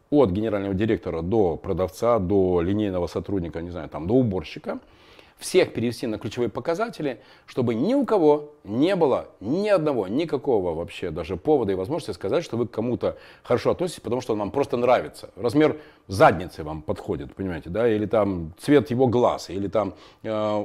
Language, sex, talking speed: Russian, male, 170 wpm